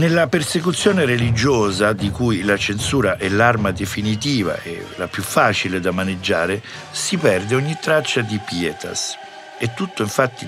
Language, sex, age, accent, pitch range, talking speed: Italian, male, 50-69, native, 100-135 Hz, 145 wpm